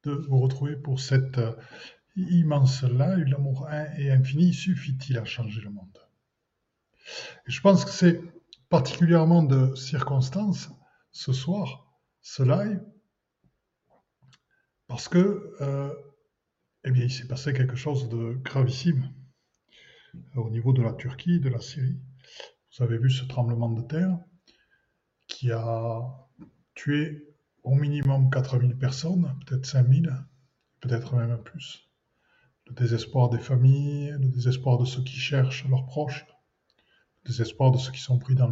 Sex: male